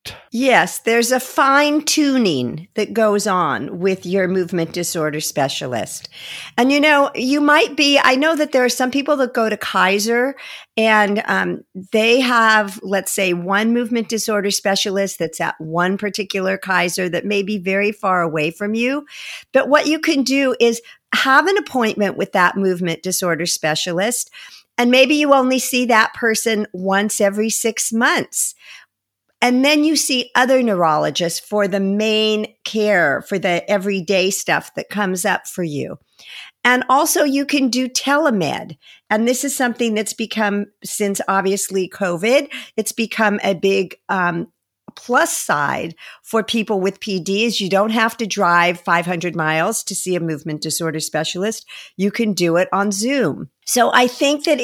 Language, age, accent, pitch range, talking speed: English, 50-69, American, 190-245 Hz, 160 wpm